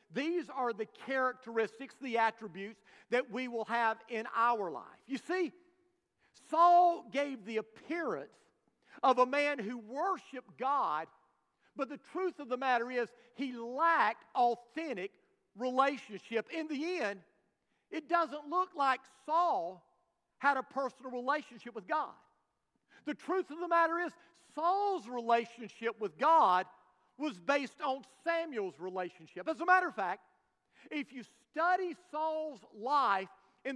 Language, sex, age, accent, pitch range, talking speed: English, male, 50-69, American, 240-325 Hz, 135 wpm